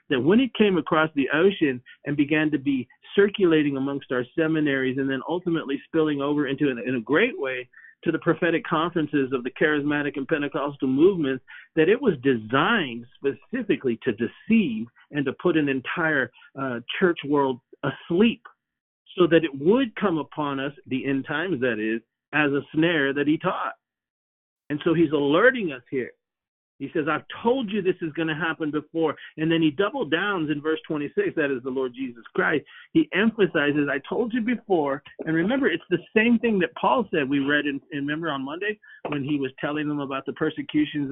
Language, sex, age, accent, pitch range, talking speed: English, male, 50-69, American, 140-175 Hz, 190 wpm